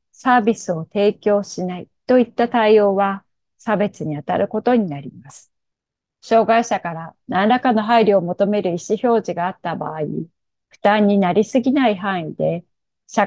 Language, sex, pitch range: Japanese, female, 180-230 Hz